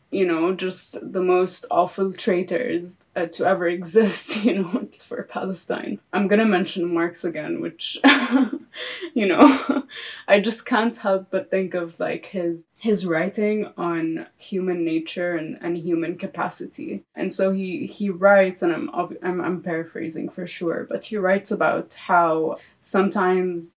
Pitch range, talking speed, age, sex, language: 170-210 Hz, 150 wpm, 20-39, female, English